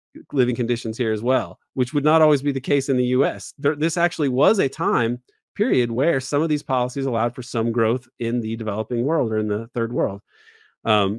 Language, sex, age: English, male, 30-49